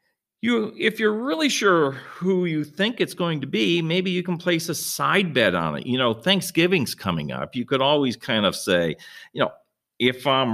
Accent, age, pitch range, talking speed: American, 50-69, 110-170 Hz, 205 wpm